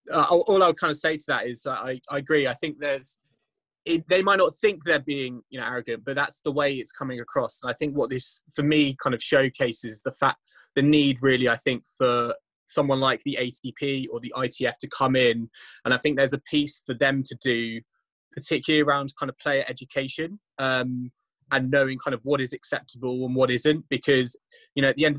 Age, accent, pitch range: 20-39, British, 125-150 Hz